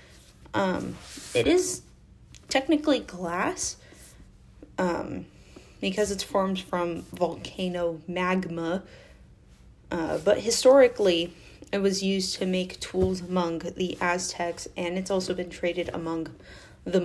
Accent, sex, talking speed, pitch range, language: American, female, 110 wpm, 170-200 Hz, English